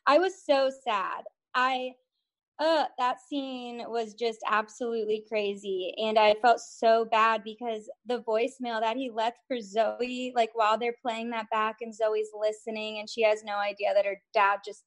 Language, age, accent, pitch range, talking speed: English, 20-39, American, 215-260 Hz, 175 wpm